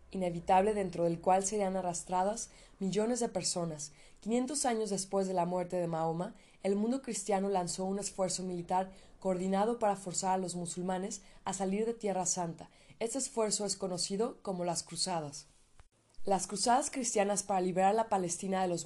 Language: Spanish